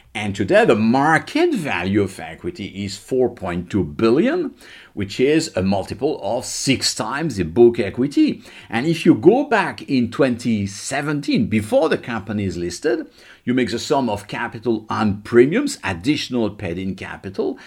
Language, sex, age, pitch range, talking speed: English, male, 50-69, 95-125 Hz, 150 wpm